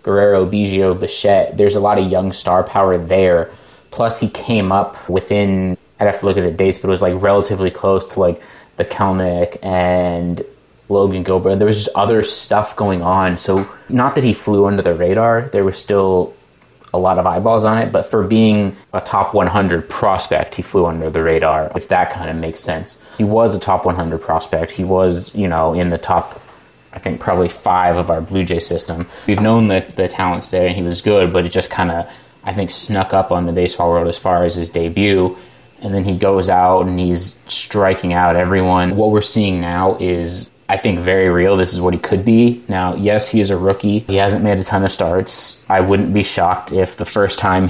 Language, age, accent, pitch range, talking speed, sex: English, 20-39, American, 90-100 Hz, 220 wpm, male